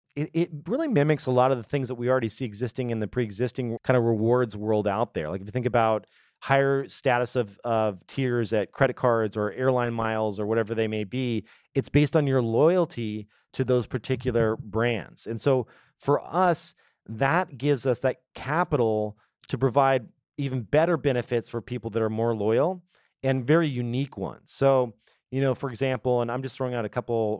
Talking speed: 195 wpm